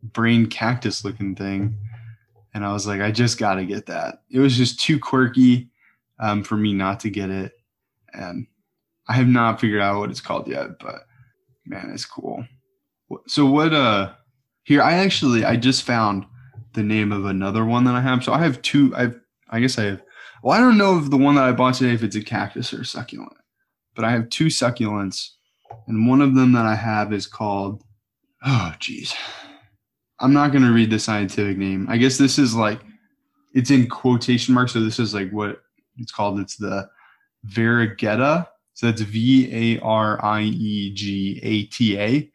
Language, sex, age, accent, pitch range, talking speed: English, male, 20-39, American, 105-130 Hz, 180 wpm